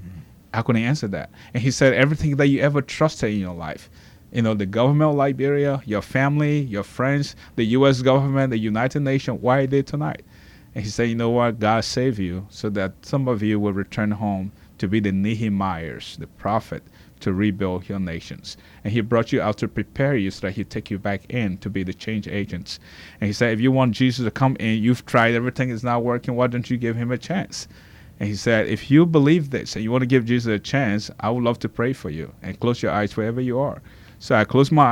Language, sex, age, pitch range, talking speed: English, male, 30-49, 105-135 Hz, 240 wpm